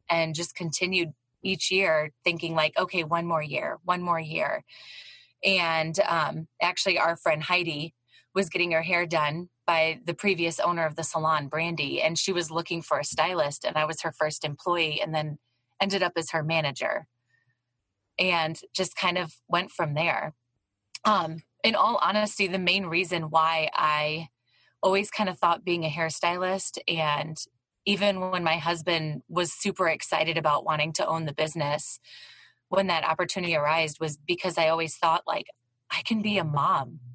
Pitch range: 155-180 Hz